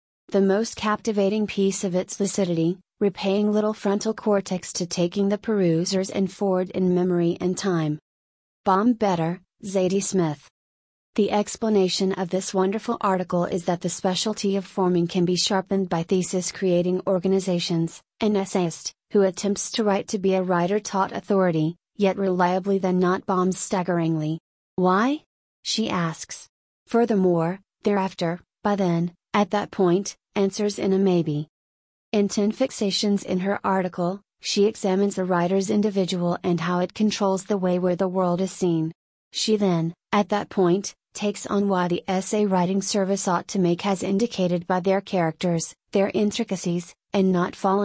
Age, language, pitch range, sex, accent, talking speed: 30-49, English, 180-200 Hz, female, American, 150 wpm